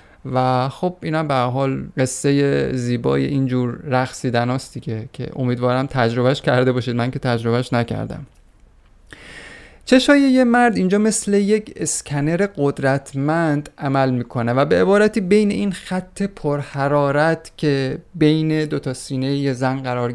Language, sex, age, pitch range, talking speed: Persian, male, 30-49, 130-180 Hz, 135 wpm